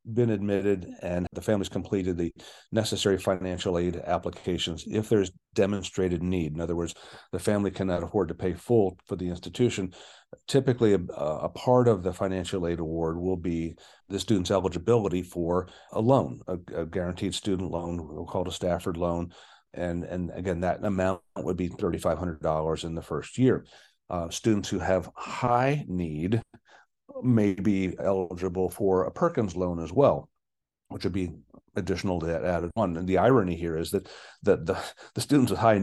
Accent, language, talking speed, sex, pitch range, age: American, English, 180 wpm, male, 85-105 Hz, 40-59